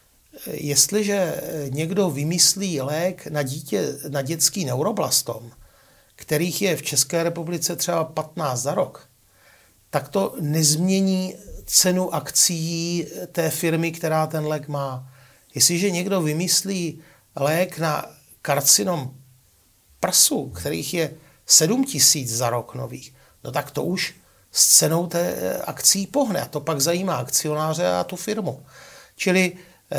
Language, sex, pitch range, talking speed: Czech, male, 140-180 Hz, 120 wpm